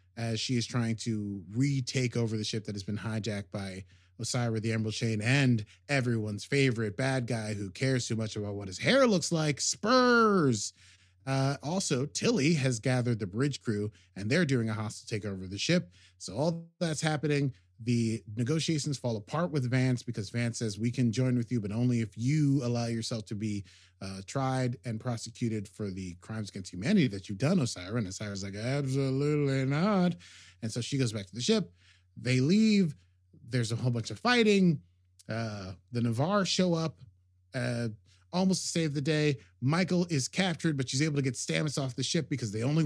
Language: English